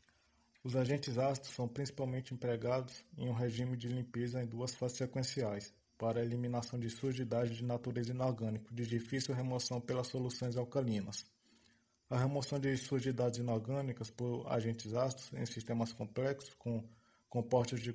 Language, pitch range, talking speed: Portuguese, 120-130 Hz, 145 wpm